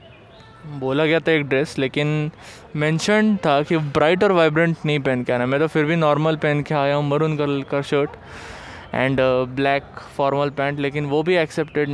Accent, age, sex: native, 20-39, male